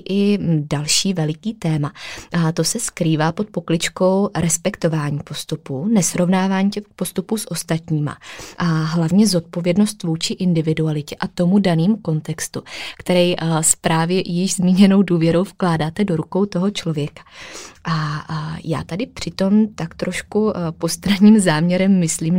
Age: 20-39